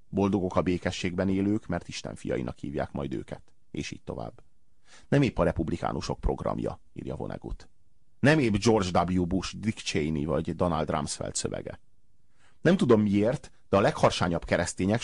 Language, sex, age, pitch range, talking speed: Hungarian, male, 30-49, 95-120 Hz, 150 wpm